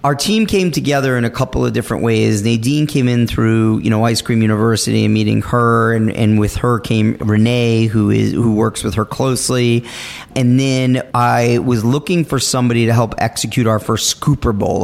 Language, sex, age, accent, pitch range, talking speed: English, male, 30-49, American, 110-125 Hz, 200 wpm